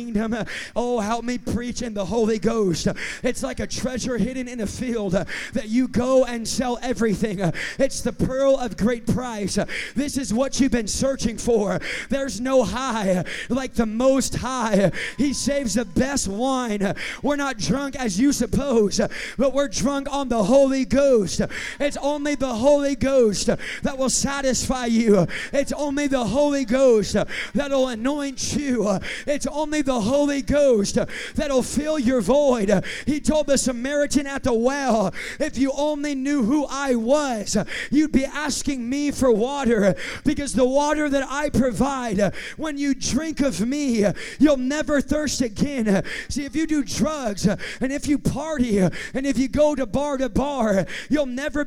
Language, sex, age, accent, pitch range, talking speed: English, male, 30-49, American, 225-280 Hz, 165 wpm